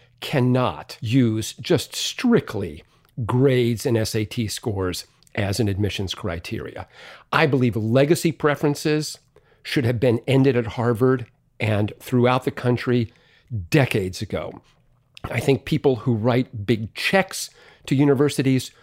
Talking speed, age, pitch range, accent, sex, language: 120 wpm, 50-69, 110-140 Hz, American, male, English